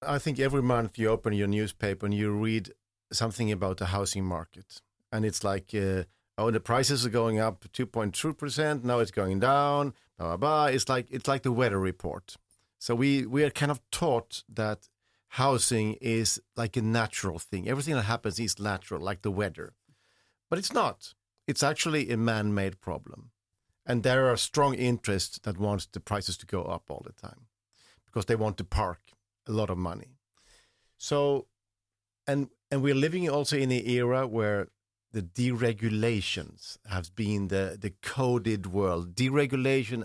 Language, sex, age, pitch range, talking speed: Dutch, male, 50-69, 100-120 Hz, 170 wpm